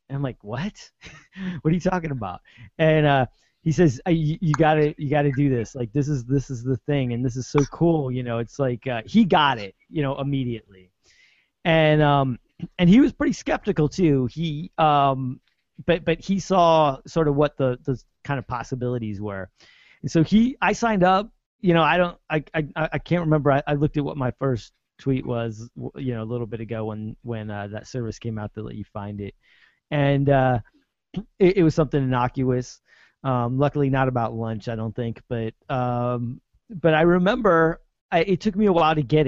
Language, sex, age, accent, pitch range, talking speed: English, male, 30-49, American, 125-165 Hz, 205 wpm